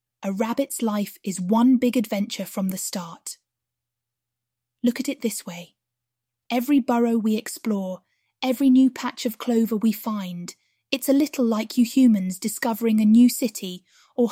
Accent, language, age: British, English, 20-39